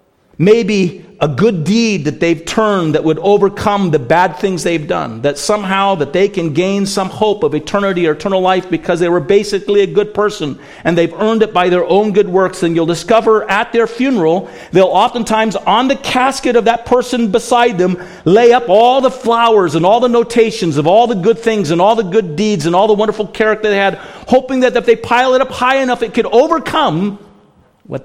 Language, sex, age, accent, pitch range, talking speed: English, male, 50-69, American, 150-220 Hz, 210 wpm